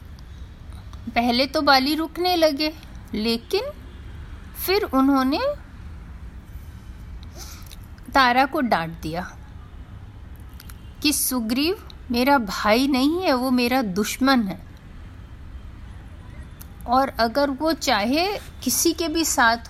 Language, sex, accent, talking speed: Hindi, female, native, 90 wpm